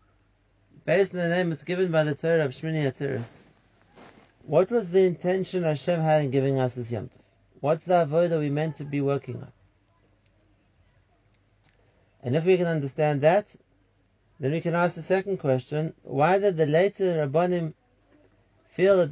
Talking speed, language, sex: 165 wpm, English, male